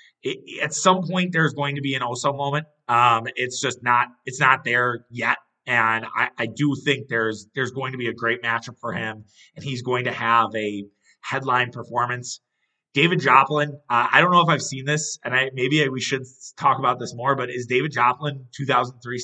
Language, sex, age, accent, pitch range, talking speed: English, male, 30-49, American, 120-140 Hz, 210 wpm